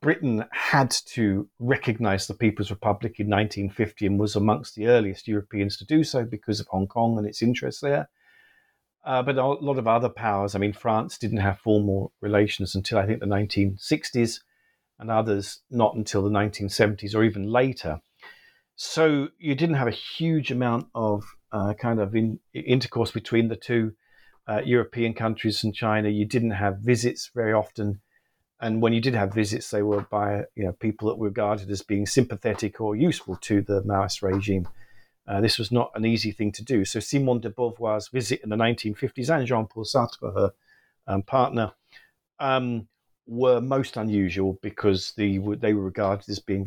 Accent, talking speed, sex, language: British, 180 wpm, male, English